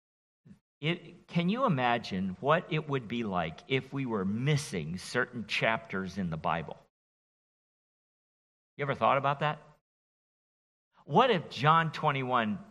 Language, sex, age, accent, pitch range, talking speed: English, male, 50-69, American, 110-160 Hz, 125 wpm